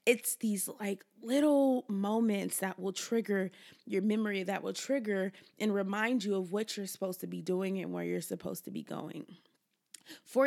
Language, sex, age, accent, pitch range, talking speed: English, female, 20-39, American, 200-275 Hz, 180 wpm